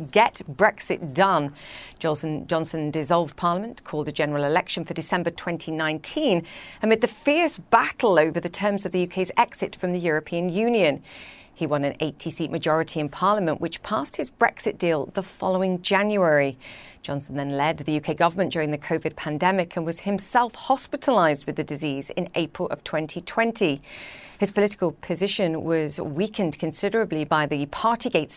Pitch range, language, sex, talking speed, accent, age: 155-200 Hz, English, female, 155 wpm, British, 40-59